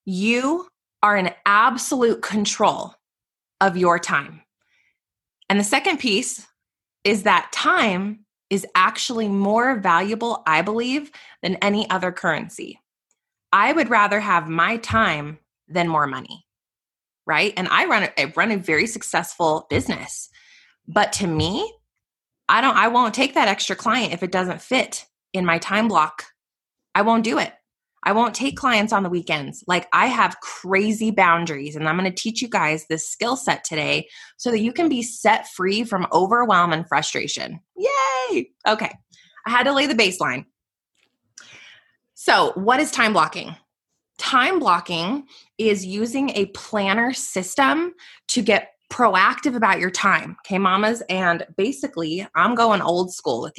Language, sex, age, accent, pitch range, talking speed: English, female, 20-39, American, 180-240 Hz, 155 wpm